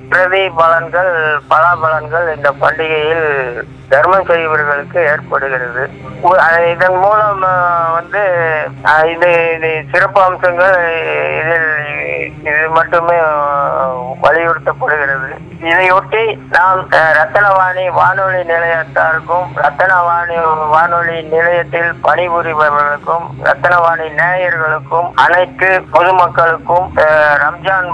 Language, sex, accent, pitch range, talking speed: Tamil, male, native, 145-170 Hz, 50 wpm